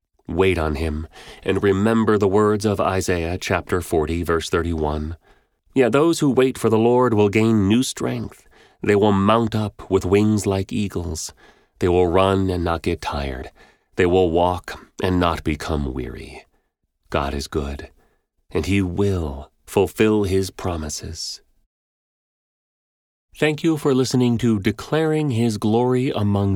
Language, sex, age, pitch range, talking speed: English, male, 30-49, 80-120 Hz, 145 wpm